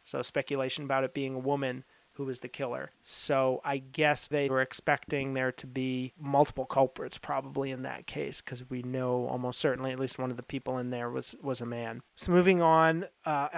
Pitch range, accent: 135-160 Hz, American